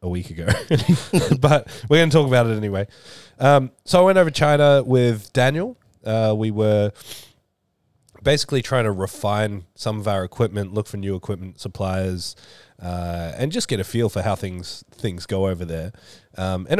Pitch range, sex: 95-125 Hz, male